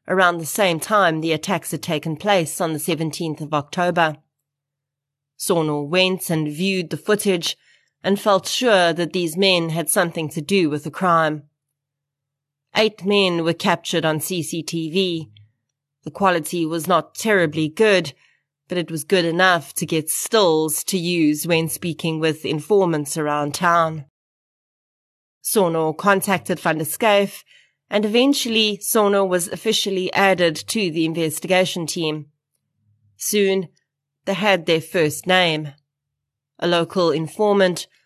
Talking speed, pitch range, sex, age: 130 wpm, 155-190 Hz, female, 30-49